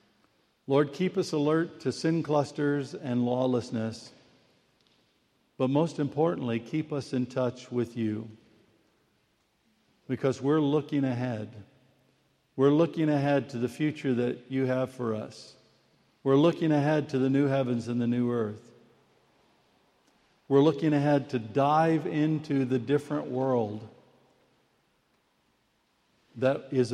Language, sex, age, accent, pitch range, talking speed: English, male, 50-69, American, 115-145 Hz, 125 wpm